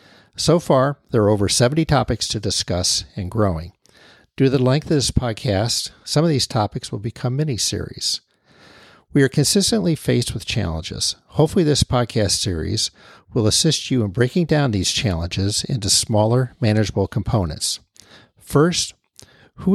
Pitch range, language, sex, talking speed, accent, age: 100-135 Hz, English, male, 150 wpm, American, 50-69